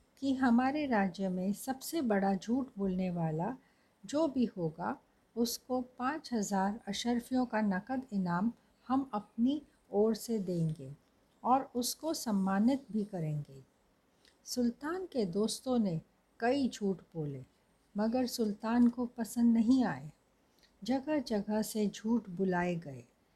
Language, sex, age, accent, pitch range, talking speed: Hindi, female, 60-79, native, 185-245 Hz, 125 wpm